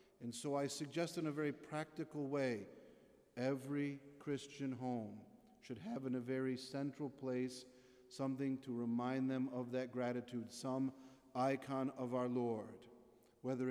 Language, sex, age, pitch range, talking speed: English, male, 50-69, 125-140 Hz, 140 wpm